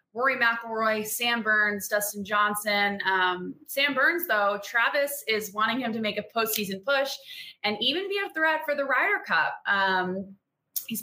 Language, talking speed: English, 165 wpm